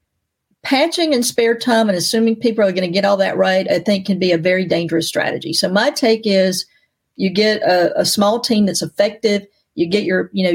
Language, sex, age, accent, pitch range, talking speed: English, female, 40-59, American, 175-210 Hz, 220 wpm